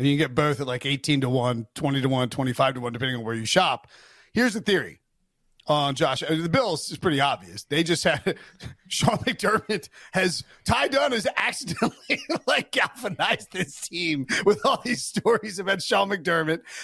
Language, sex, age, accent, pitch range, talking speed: English, male, 30-49, American, 175-240 Hz, 195 wpm